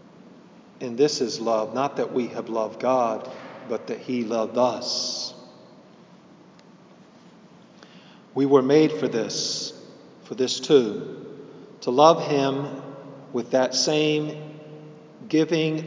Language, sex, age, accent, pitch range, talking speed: English, male, 40-59, American, 120-150 Hz, 115 wpm